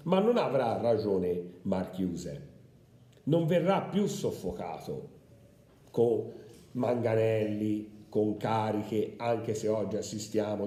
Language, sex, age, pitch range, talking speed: Italian, male, 50-69, 110-170 Hz, 95 wpm